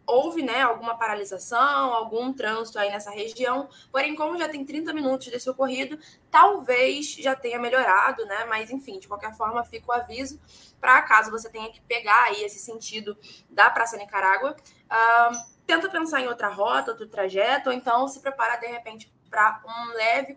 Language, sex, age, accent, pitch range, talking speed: Portuguese, female, 10-29, Brazilian, 210-270 Hz, 175 wpm